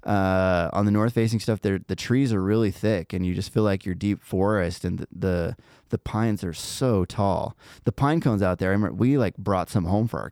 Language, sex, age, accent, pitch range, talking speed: English, male, 20-39, American, 95-120 Hz, 240 wpm